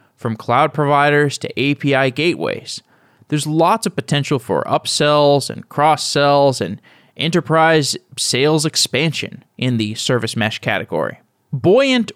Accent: American